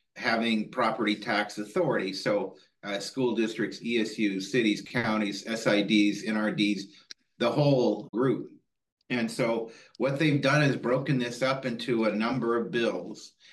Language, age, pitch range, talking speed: English, 40-59, 110-120 Hz, 135 wpm